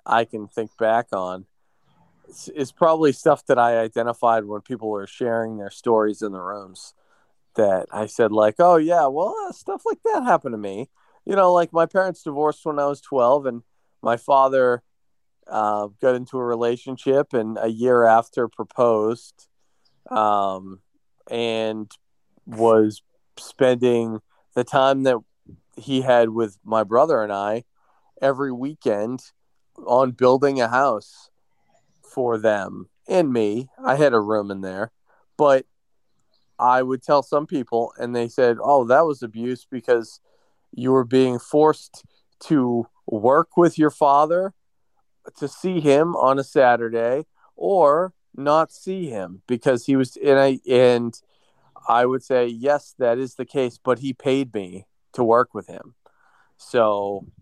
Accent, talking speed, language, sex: American, 150 wpm, English, male